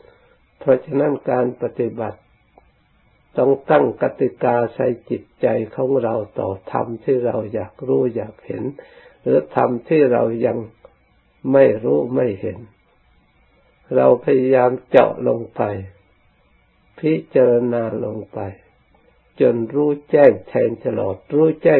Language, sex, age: Thai, male, 60-79